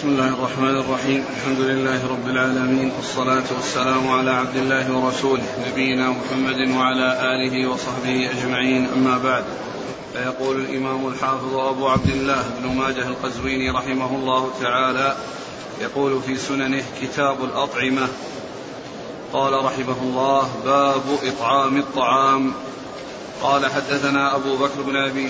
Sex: male